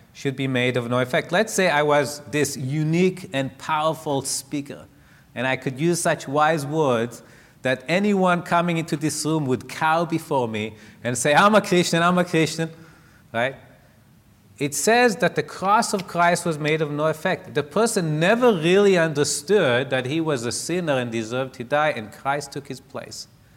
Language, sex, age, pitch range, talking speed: English, male, 30-49, 120-160 Hz, 185 wpm